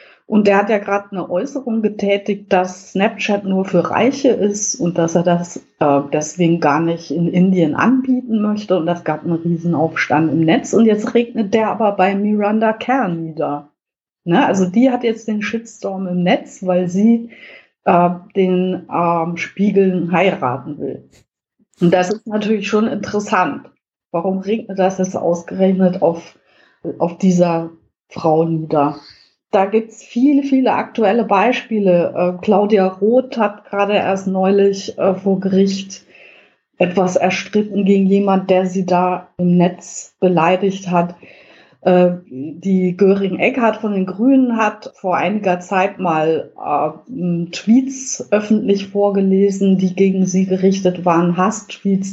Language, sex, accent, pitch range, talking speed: German, female, German, 175-210 Hz, 140 wpm